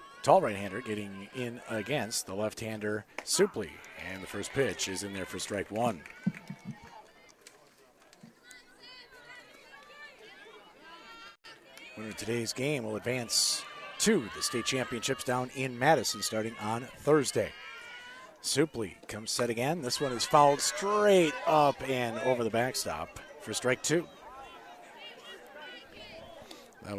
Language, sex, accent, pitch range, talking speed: English, male, American, 105-145 Hz, 110 wpm